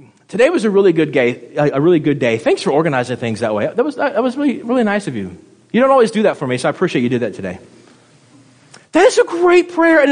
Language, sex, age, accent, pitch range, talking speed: English, male, 30-49, American, 125-185 Hz, 245 wpm